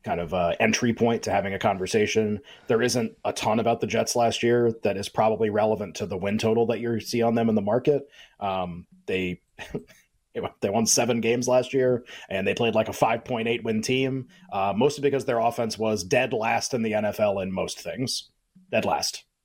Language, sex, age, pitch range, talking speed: English, male, 30-49, 110-135 Hz, 210 wpm